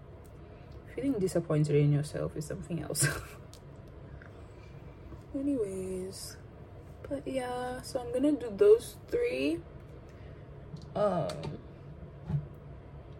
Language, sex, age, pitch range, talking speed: English, female, 20-39, 175-215 Hz, 75 wpm